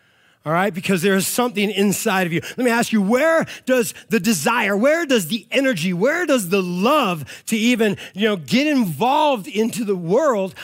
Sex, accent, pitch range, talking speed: male, American, 200-255 Hz, 190 wpm